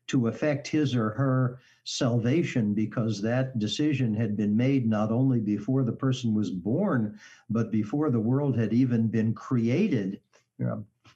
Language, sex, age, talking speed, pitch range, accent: English, male, 60-79, 150 wpm, 110-135 Hz, American